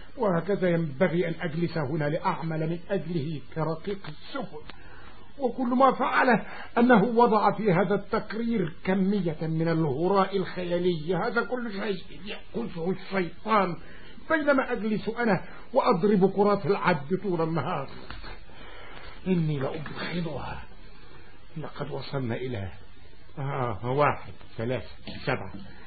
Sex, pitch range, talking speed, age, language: male, 135-195 Hz, 100 wpm, 50-69, Arabic